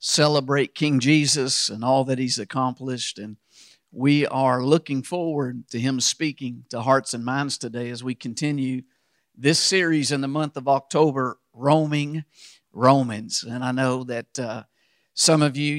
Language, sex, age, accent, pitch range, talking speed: English, male, 50-69, American, 125-145 Hz, 155 wpm